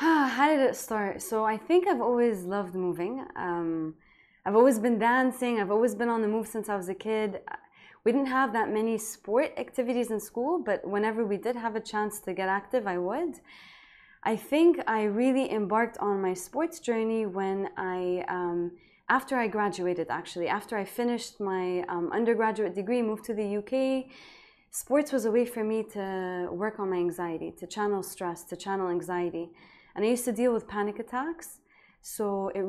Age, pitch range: 20-39, 195-240 Hz